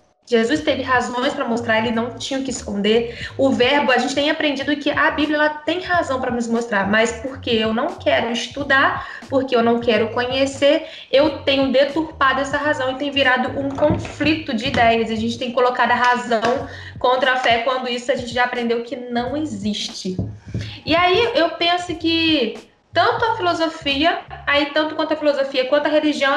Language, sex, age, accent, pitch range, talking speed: Portuguese, female, 20-39, Brazilian, 250-325 Hz, 190 wpm